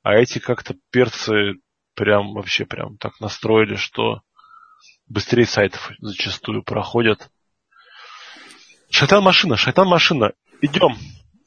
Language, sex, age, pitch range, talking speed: Russian, male, 20-39, 110-155 Hz, 90 wpm